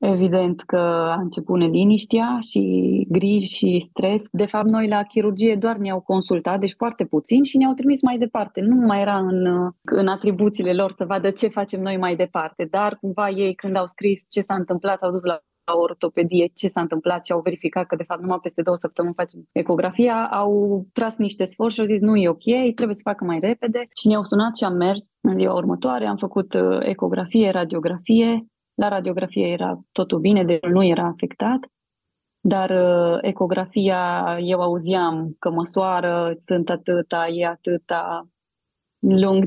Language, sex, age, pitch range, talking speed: Romanian, female, 20-39, 170-205 Hz, 175 wpm